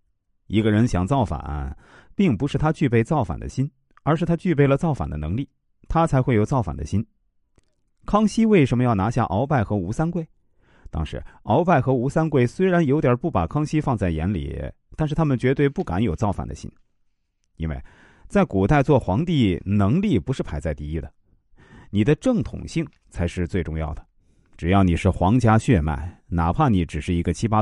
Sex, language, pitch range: male, Chinese, 85-140 Hz